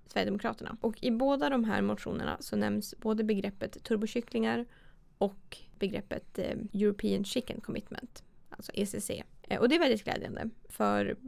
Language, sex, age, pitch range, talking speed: Swedish, female, 20-39, 200-230 Hz, 135 wpm